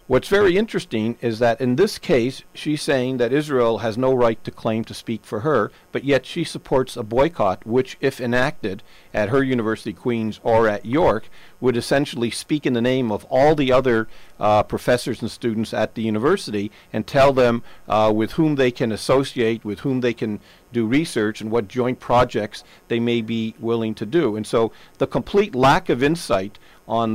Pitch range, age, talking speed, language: 105-130 Hz, 50-69, 195 wpm, English